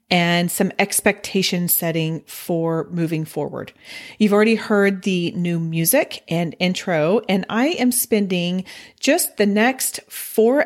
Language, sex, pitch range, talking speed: English, female, 170-210 Hz, 130 wpm